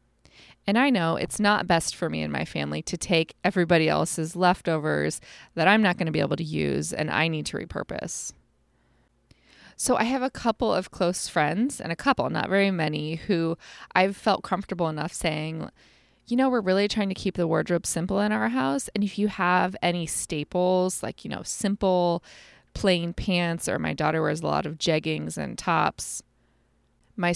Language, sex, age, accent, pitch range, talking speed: English, female, 20-39, American, 155-195 Hz, 190 wpm